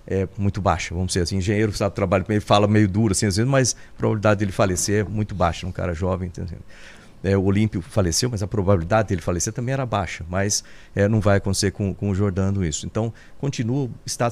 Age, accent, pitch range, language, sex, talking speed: 50-69, Brazilian, 95-115 Hz, Portuguese, male, 220 wpm